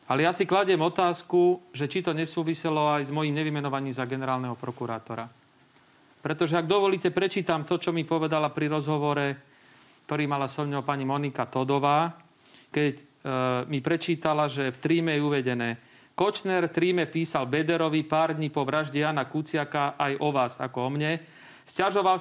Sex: male